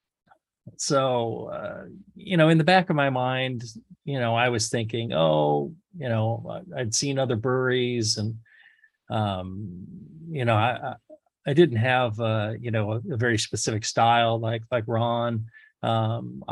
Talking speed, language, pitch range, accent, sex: 155 wpm, English, 110-130 Hz, American, male